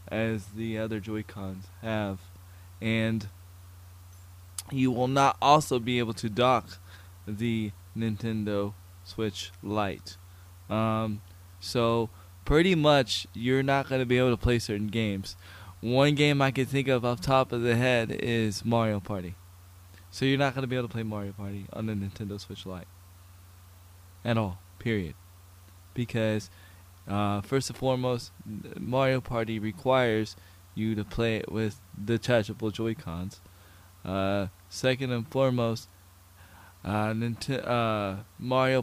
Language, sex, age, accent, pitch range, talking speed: English, male, 20-39, American, 95-120 Hz, 140 wpm